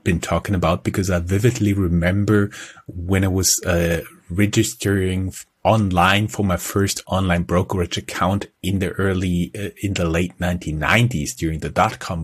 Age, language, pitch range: 30-49, English, 90-110 Hz